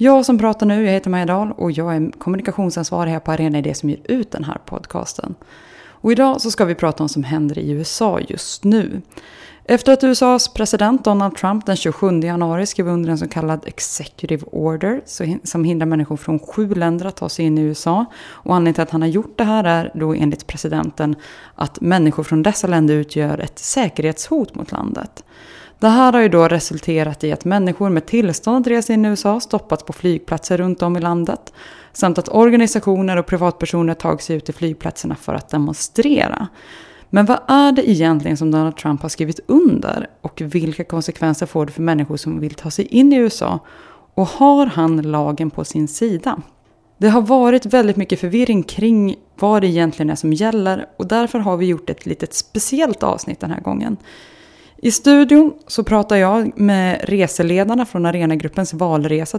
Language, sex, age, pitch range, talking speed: Swedish, female, 20-39, 160-220 Hz, 190 wpm